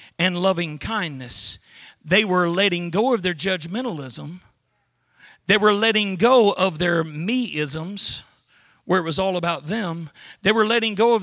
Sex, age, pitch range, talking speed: male, 40-59, 165-225 Hz, 155 wpm